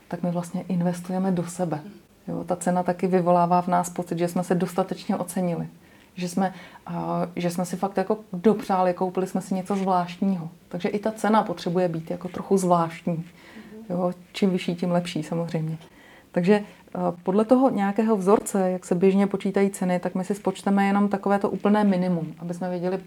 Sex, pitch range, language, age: female, 180-195 Hz, Czech, 30-49